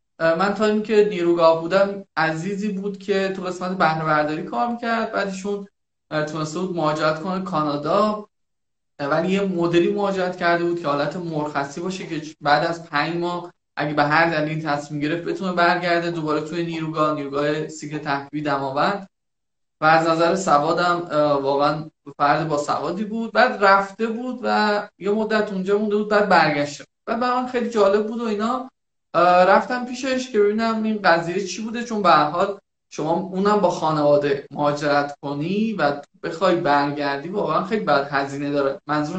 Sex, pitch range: male, 150-195 Hz